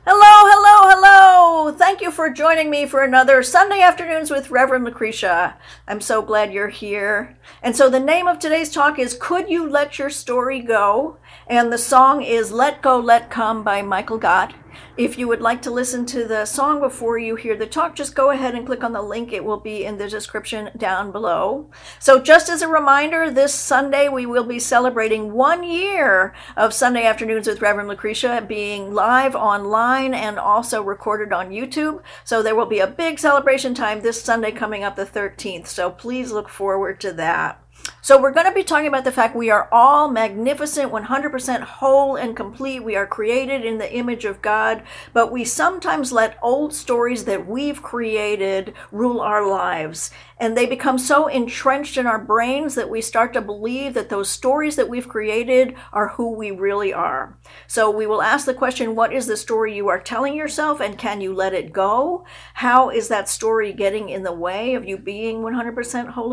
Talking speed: 195 wpm